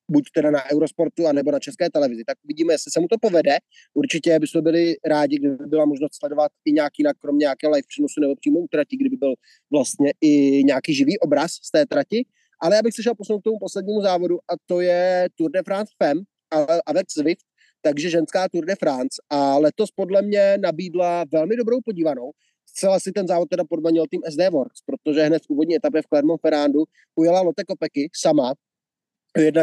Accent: native